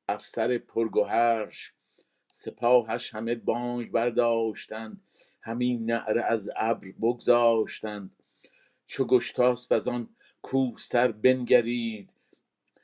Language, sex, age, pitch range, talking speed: Persian, male, 50-69, 115-125 Hz, 85 wpm